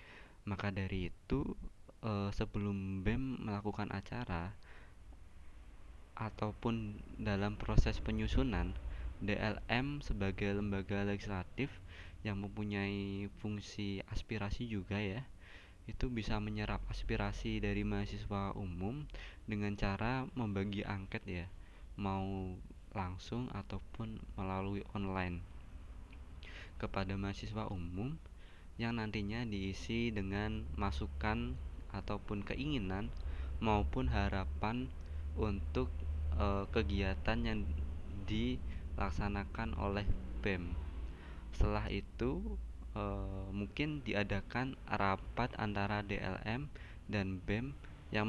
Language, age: Indonesian, 20-39